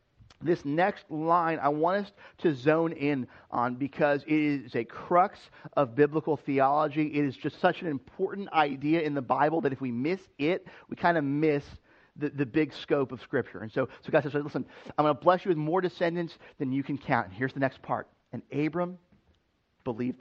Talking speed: 205 wpm